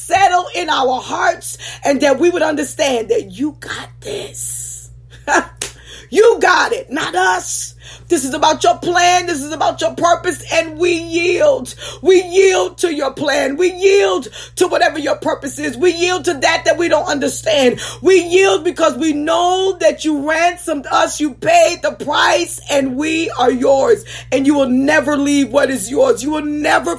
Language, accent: English, American